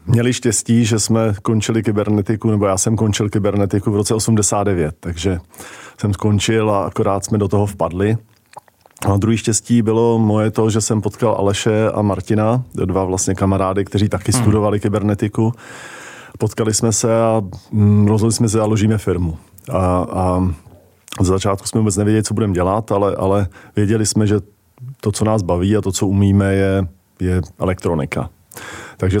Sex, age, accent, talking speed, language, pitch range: male, 40-59, native, 160 wpm, Czech, 95-110 Hz